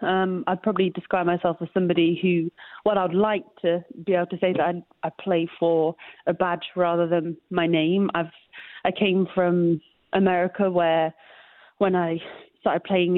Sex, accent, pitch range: female, British, 170-185 Hz